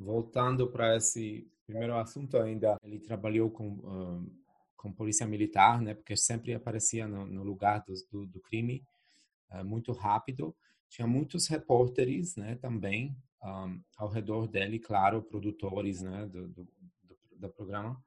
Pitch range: 105-125 Hz